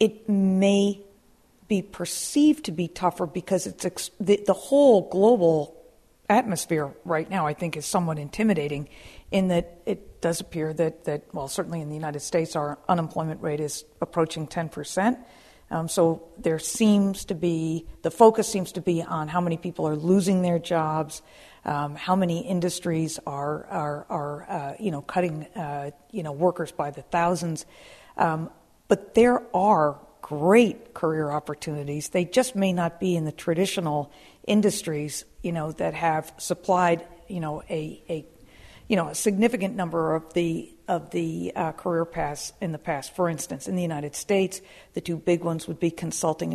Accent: American